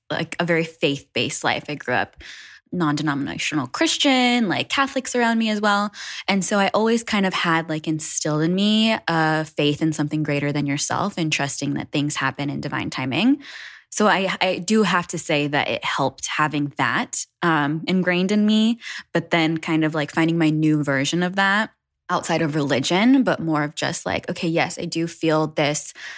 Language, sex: English, female